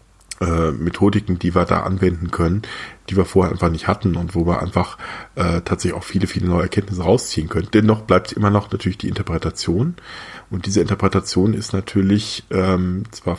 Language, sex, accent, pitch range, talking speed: German, male, German, 90-110 Hz, 175 wpm